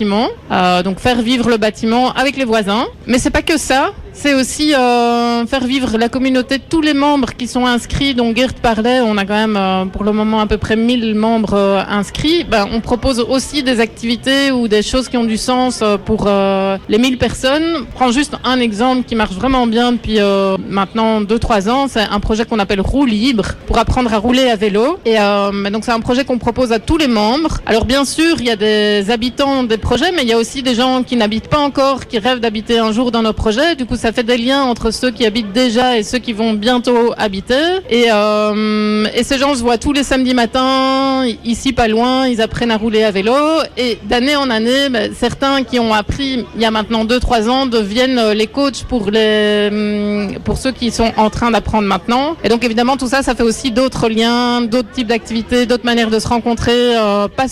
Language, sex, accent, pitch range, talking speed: French, female, French, 215-255 Hz, 225 wpm